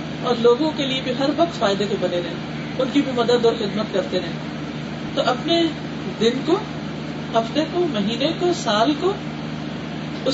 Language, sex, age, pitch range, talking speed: Urdu, female, 40-59, 210-285 Hz, 170 wpm